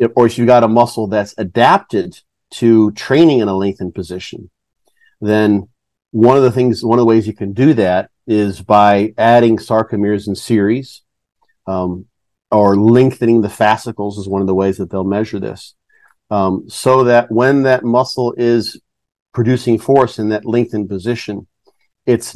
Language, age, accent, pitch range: English, 50-69, American, 105-120 Hz